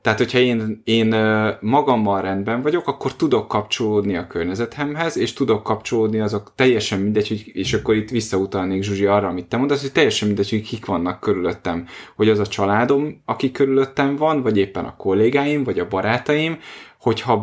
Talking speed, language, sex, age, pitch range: 170 wpm, Hungarian, male, 20-39, 100-125 Hz